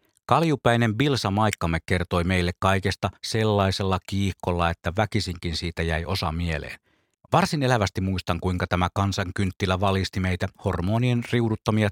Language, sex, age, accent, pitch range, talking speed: Finnish, male, 50-69, native, 90-115 Hz, 125 wpm